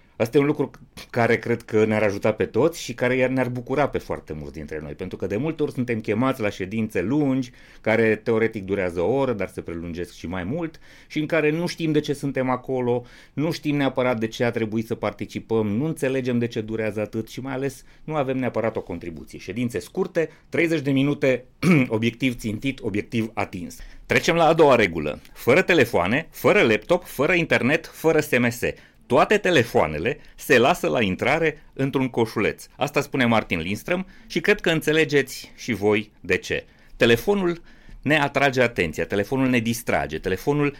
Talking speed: 180 wpm